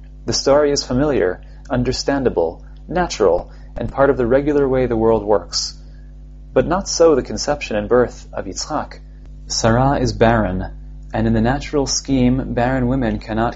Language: English